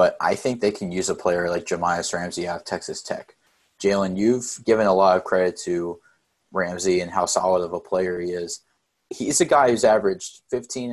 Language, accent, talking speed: English, American, 210 wpm